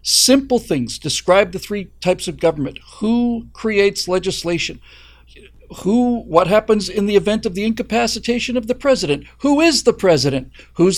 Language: English